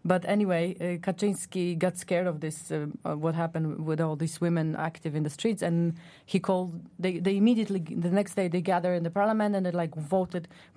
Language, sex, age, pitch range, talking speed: English, female, 30-49, 160-190 Hz, 210 wpm